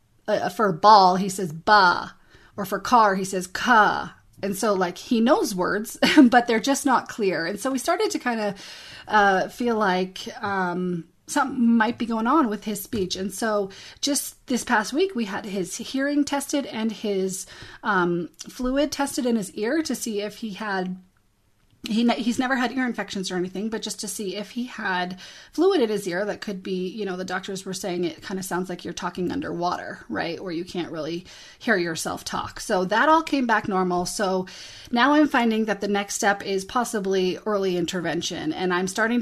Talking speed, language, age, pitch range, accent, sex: 195 wpm, English, 30-49, 190-245 Hz, American, female